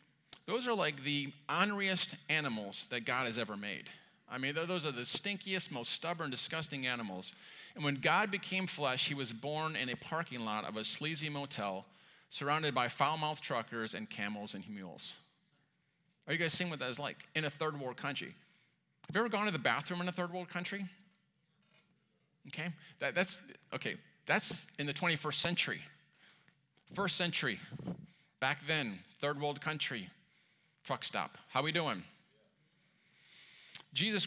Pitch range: 125-175 Hz